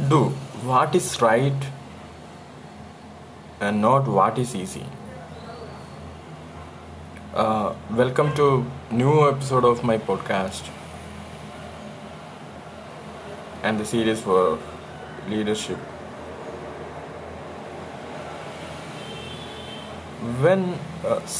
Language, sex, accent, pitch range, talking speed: English, male, Indian, 115-145 Hz, 65 wpm